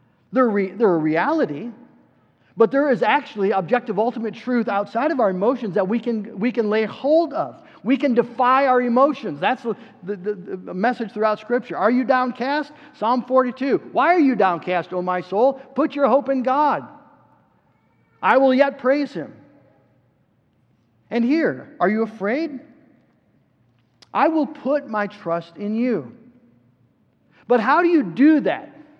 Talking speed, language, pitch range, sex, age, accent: 155 wpm, English, 210-275 Hz, male, 50-69, American